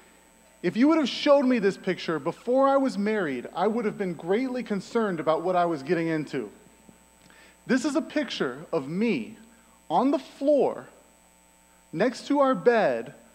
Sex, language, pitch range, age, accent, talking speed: male, English, 165-230 Hz, 30-49, American, 165 wpm